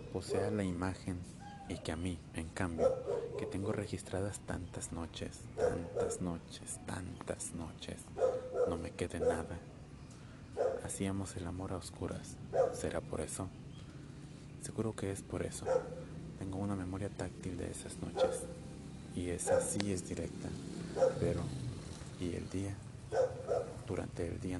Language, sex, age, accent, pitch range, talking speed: Spanish, male, 30-49, Mexican, 90-120 Hz, 135 wpm